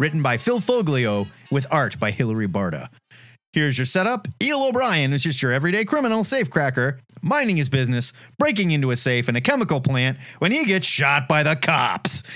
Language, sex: English, male